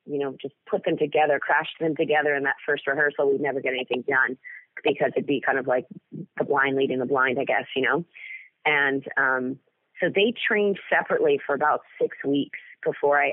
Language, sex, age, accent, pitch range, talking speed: English, female, 30-49, American, 150-205 Hz, 205 wpm